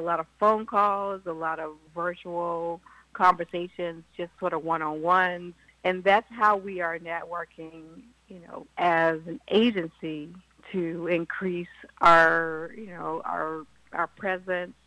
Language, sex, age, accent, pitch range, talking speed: English, female, 50-69, American, 165-185 Hz, 135 wpm